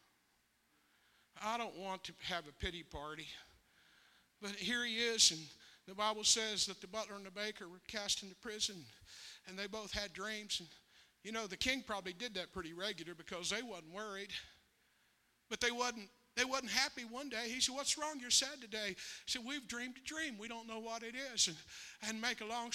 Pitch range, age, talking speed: 200-250 Hz, 60-79, 205 wpm